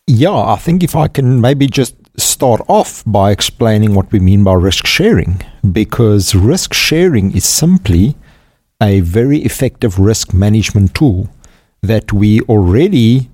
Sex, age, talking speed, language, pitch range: male, 50-69, 145 wpm, English, 95-115 Hz